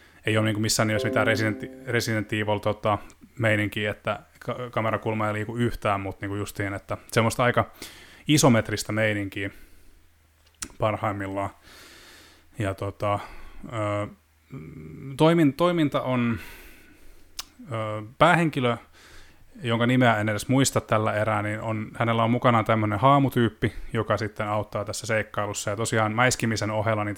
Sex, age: male, 20-39